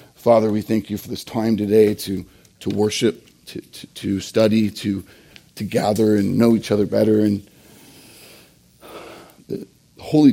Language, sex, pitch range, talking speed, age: English, male, 110-135 Hz, 150 wpm, 40-59